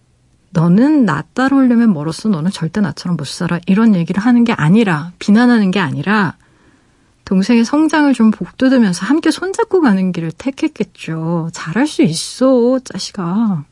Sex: female